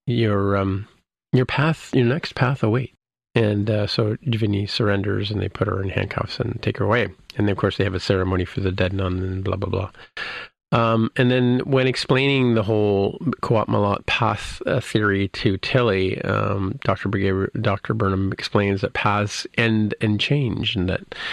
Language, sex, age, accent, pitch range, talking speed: English, male, 40-59, American, 100-120 Hz, 185 wpm